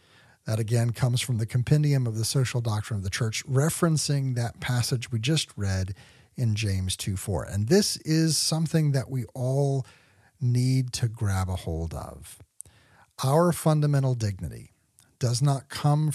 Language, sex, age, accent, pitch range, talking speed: English, male, 40-59, American, 110-150 Hz, 150 wpm